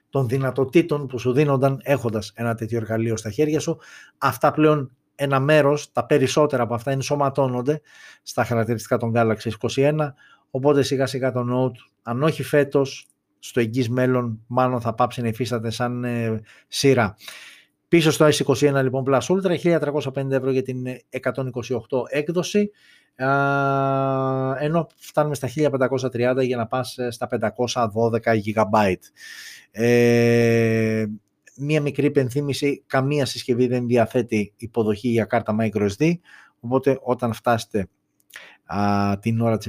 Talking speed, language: 130 wpm, Greek